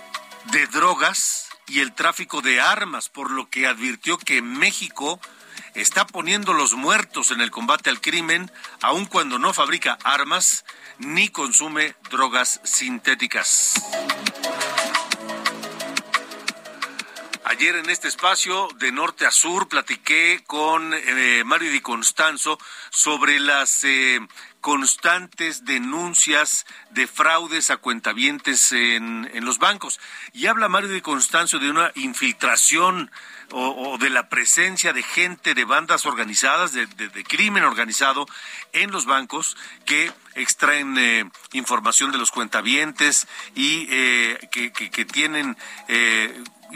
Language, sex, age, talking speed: Spanish, male, 50-69, 125 wpm